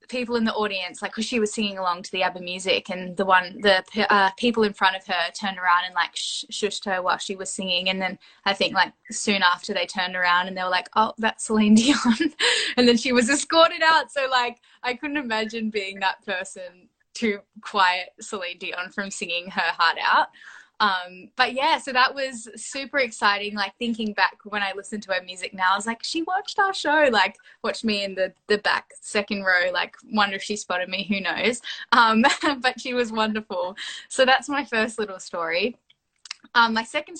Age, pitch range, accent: 10-29, 185-235 Hz, Australian